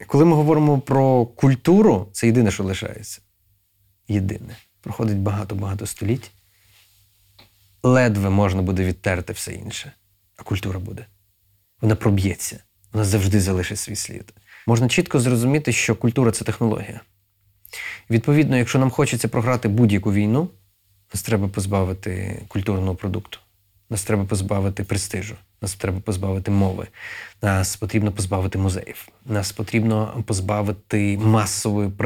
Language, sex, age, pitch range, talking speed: Ukrainian, male, 30-49, 100-115 Hz, 120 wpm